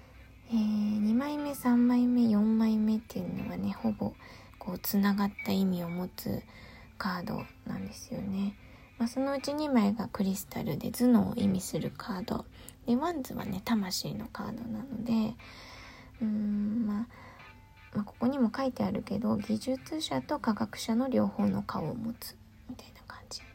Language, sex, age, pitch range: Japanese, female, 20-39, 195-240 Hz